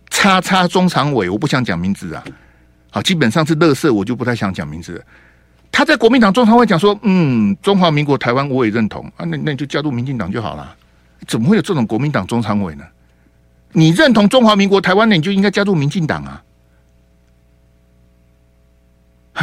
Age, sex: 60-79, male